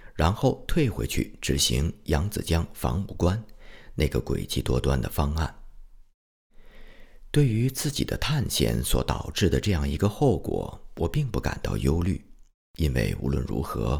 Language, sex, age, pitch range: Chinese, male, 50-69, 70-110 Hz